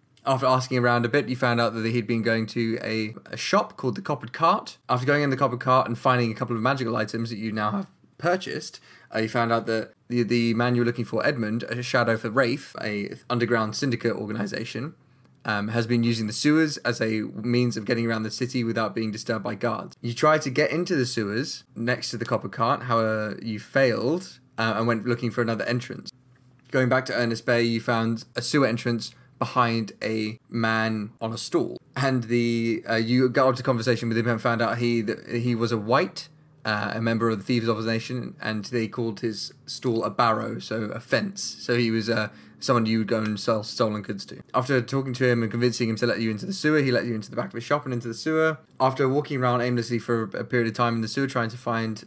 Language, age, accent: English, 20-39, British